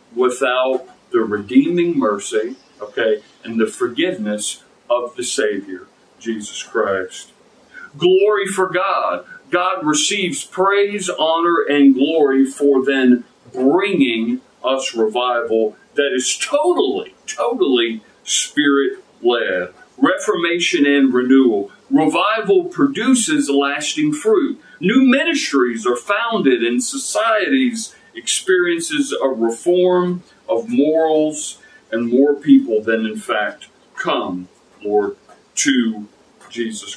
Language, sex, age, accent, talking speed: English, male, 50-69, American, 100 wpm